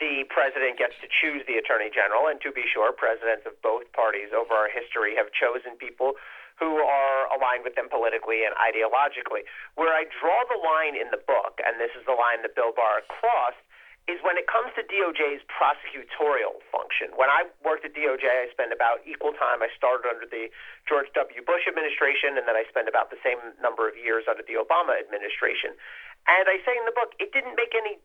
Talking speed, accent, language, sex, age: 210 wpm, American, English, male, 40-59